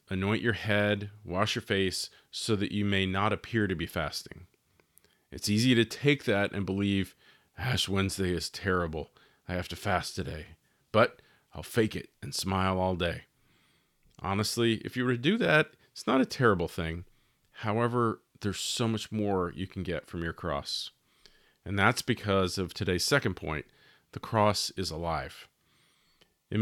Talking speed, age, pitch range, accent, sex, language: 165 wpm, 40-59, 90-105 Hz, American, male, English